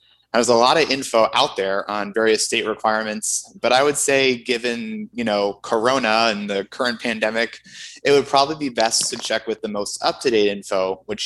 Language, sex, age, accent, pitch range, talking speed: English, male, 20-39, American, 105-135 Hz, 190 wpm